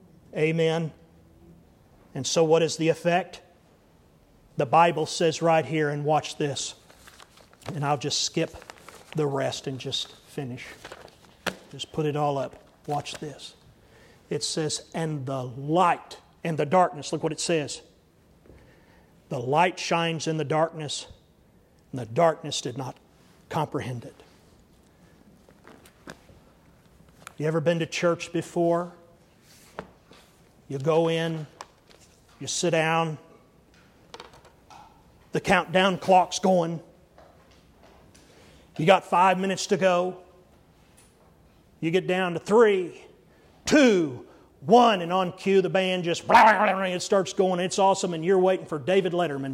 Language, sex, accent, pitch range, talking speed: English, male, American, 150-185 Hz, 125 wpm